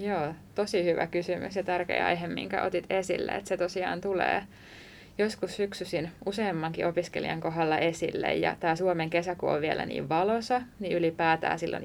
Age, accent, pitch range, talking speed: 20-39, native, 155-185 Hz, 155 wpm